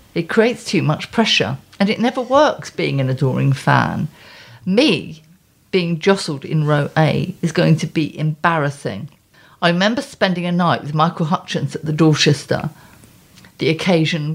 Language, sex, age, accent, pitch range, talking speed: English, female, 50-69, British, 150-190 Hz, 155 wpm